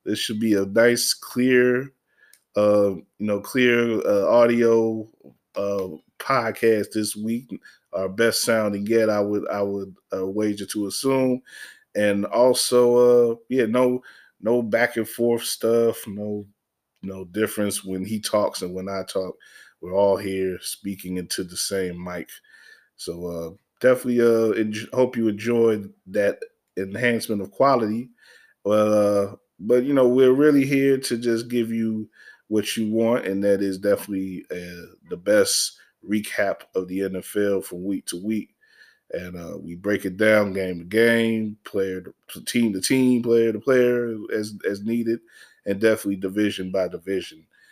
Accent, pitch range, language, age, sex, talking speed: American, 95-115 Hz, English, 20-39, male, 155 wpm